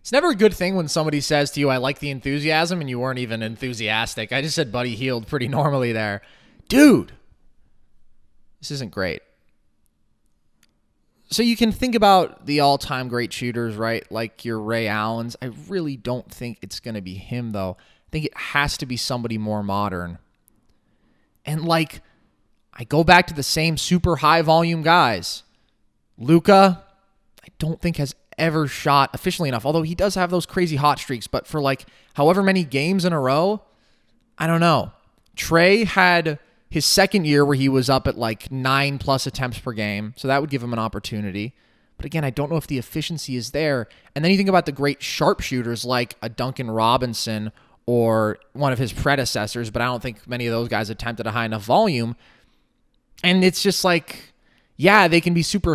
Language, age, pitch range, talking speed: English, 20-39, 115-165 Hz, 190 wpm